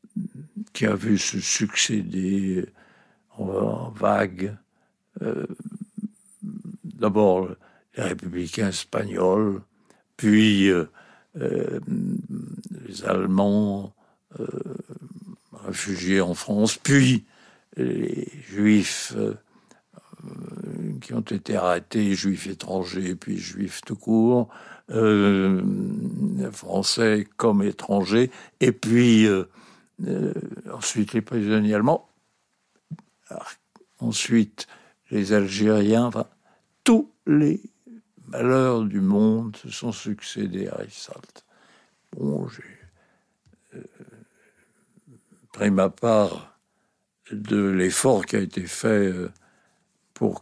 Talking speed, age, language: 90 wpm, 60-79, French